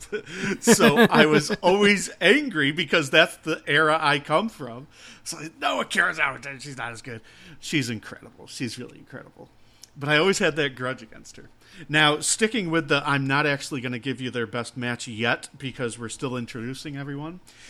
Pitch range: 120-150 Hz